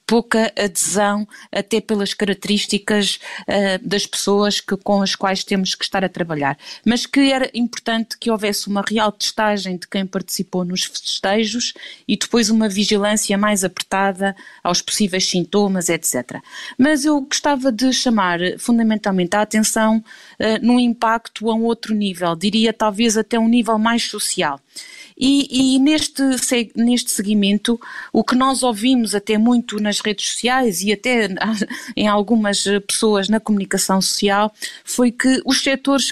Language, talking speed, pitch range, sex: Portuguese, 145 wpm, 200-240 Hz, female